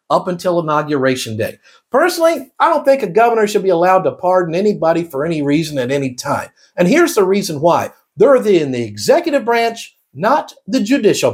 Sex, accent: male, American